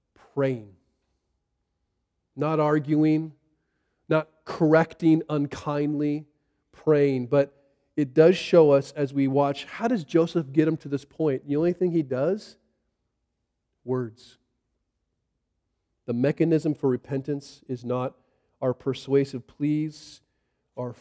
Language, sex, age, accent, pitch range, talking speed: English, male, 40-59, American, 120-150 Hz, 110 wpm